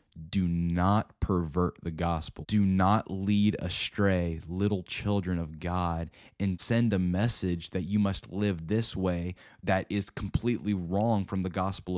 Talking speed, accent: 150 wpm, American